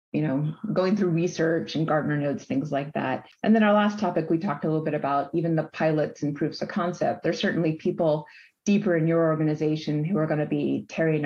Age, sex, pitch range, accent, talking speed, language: 30-49, female, 155-205 Hz, American, 225 wpm, English